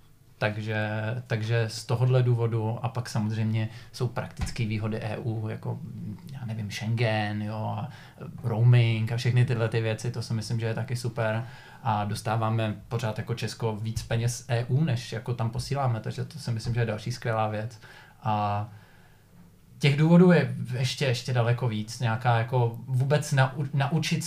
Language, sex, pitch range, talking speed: Czech, male, 110-125 Hz, 160 wpm